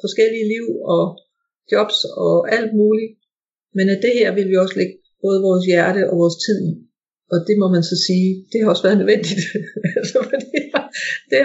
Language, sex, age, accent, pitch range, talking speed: Danish, female, 50-69, native, 185-225 Hz, 175 wpm